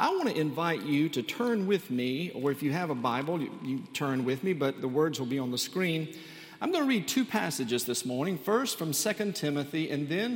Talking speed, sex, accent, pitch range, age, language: 245 wpm, male, American, 135-185 Hz, 50-69, English